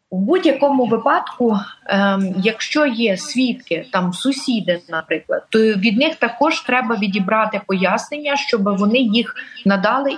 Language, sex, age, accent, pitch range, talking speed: Ukrainian, female, 30-49, native, 190-235 Hz, 125 wpm